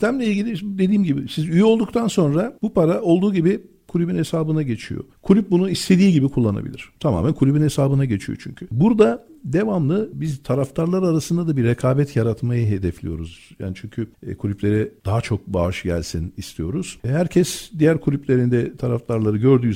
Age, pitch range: 60-79, 105-165 Hz